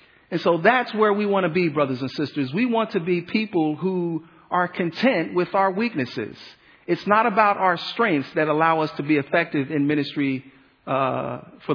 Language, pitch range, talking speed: English, 140-180 Hz, 190 wpm